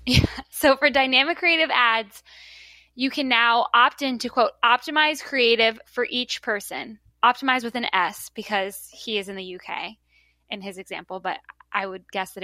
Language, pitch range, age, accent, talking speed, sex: English, 220-280 Hz, 10-29, American, 170 wpm, female